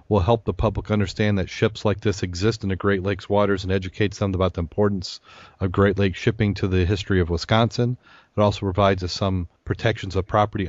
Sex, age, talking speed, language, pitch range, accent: male, 40-59, 215 wpm, English, 95-110 Hz, American